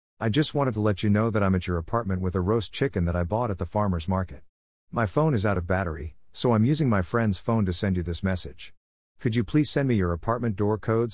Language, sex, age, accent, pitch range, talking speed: English, male, 50-69, American, 90-115 Hz, 265 wpm